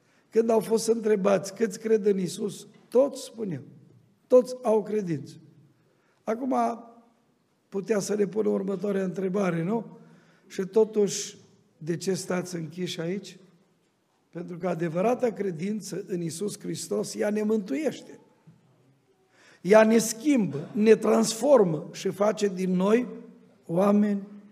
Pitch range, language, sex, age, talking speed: 180-225 Hz, Romanian, male, 50-69, 115 wpm